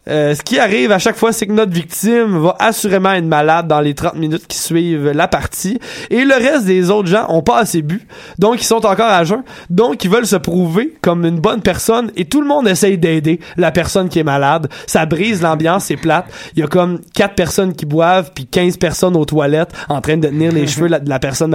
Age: 20-39